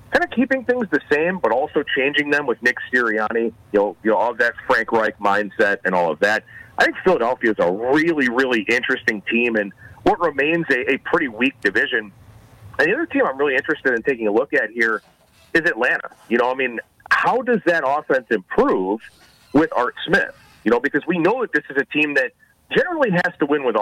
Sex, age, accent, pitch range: male, 40-59, American, 110-165 Hz